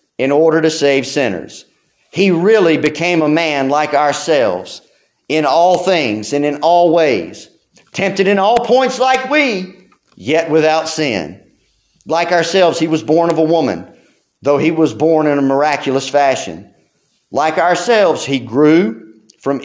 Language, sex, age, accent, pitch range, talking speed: English, male, 40-59, American, 135-175 Hz, 150 wpm